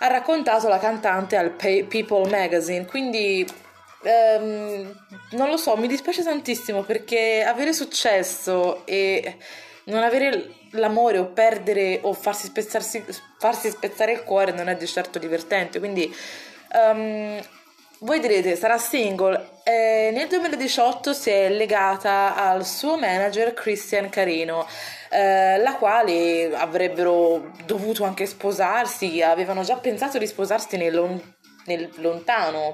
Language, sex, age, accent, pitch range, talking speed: Italian, female, 20-39, native, 175-230 Hz, 125 wpm